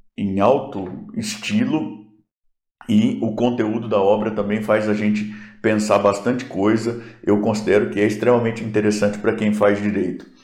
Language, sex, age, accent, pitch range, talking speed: Portuguese, male, 50-69, Brazilian, 105-135 Hz, 145 wpm